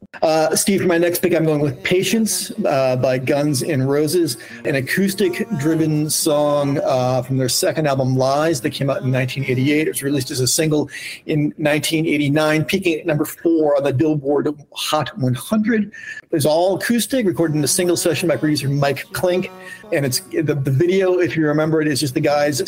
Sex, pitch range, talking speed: male, 135-170 Hz, 190 wpm